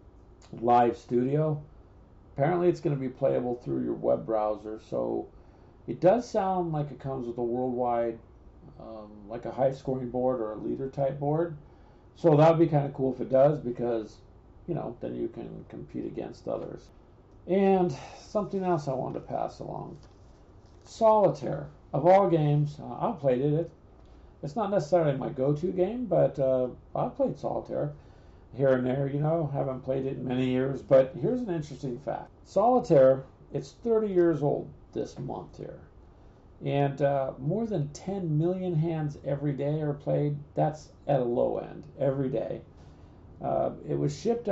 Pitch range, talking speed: 120-160 Hz, 165 wpm